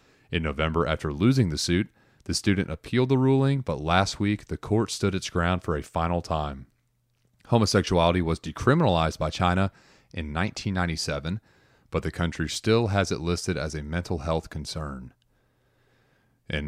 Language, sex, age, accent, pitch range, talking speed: English, male, 30-49, American, 80-110 Hz, 155 wpm